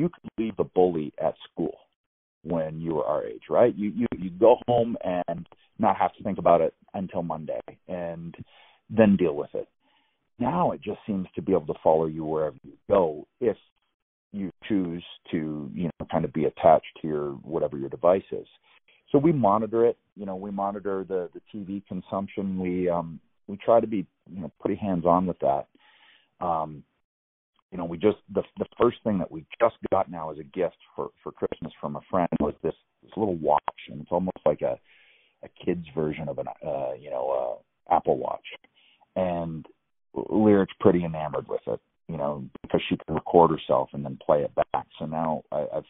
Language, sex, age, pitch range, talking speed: English, male, 40-59, 80-100 Hz, 200 wpm